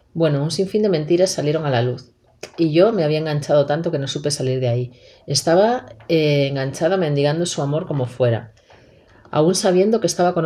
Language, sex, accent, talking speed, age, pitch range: Spanish, female, Spanish, 195 wpm, 40-59, 140-175 Hz